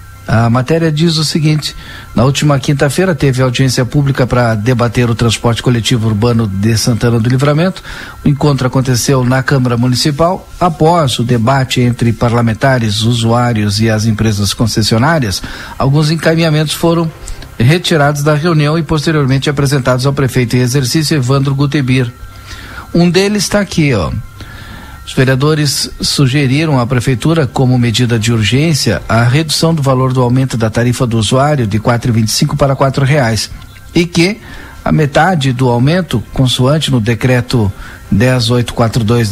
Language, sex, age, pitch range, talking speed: Portuguese, male, 50-69, 120-150 Hz, 140 wpm